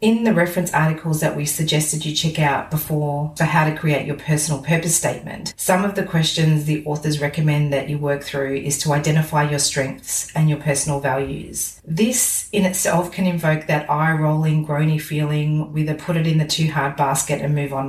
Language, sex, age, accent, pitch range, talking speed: English, female, 40-59, Australian, 145-175 Hz, 170 wpm